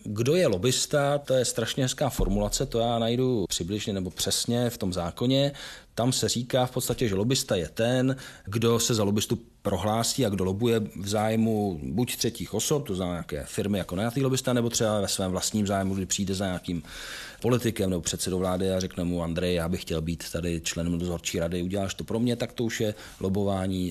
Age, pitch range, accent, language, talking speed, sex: 40-59, 95-120 Hz, native, Czech, 205 wpm, male